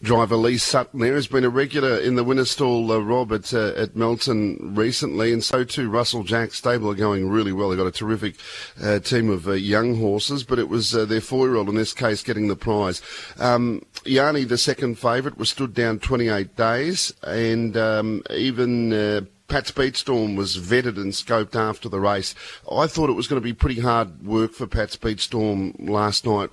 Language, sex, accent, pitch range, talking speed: English, male, Australian, 105-125 Hz, 200 wpm